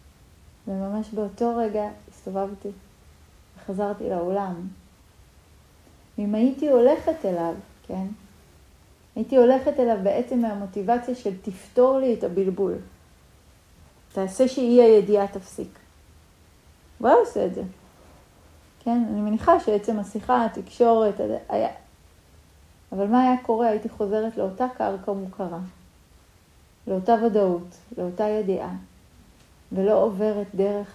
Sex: female